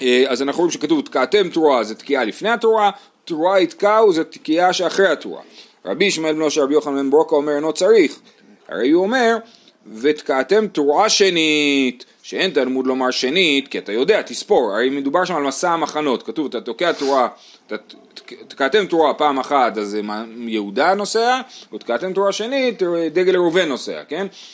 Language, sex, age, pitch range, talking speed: Hebrew, male, 30-49, 145-200 Hz, 155 wpm